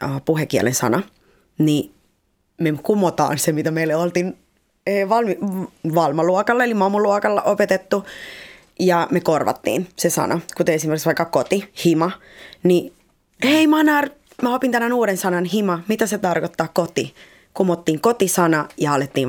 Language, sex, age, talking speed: Finnish, female, 20-39, 130 wpm